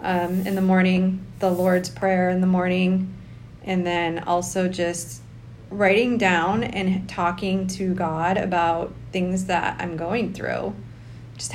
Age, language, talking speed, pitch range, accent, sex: 30-49, English, 140 wpm, 170-190 Hz, American, female